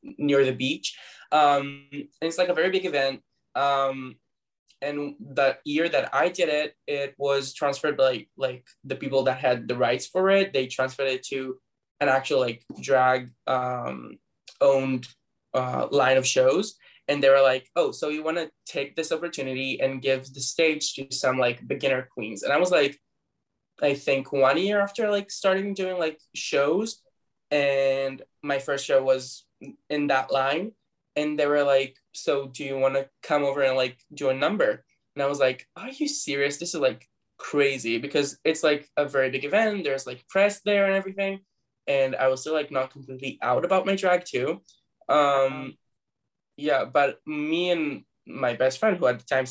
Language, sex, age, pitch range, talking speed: English, male, 10-29, 130-160 Hz, 185 wpm